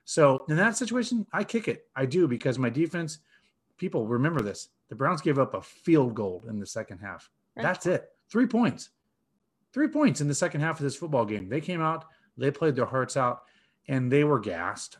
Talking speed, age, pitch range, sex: 210 wpm, 30-49, 115-170 Hz, male